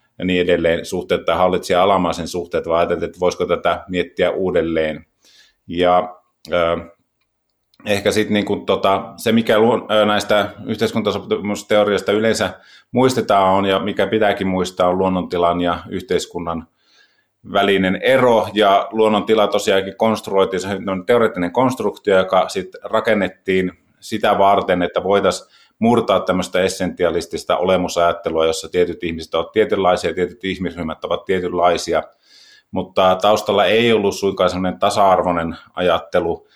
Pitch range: 85-100 Hz